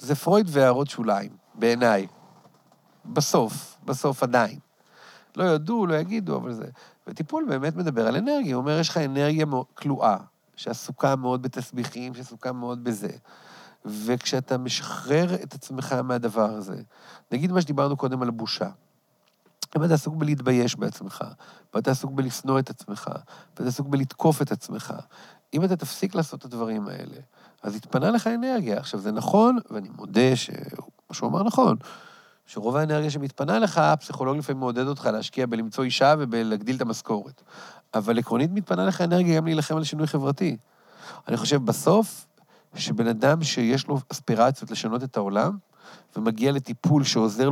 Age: 40-59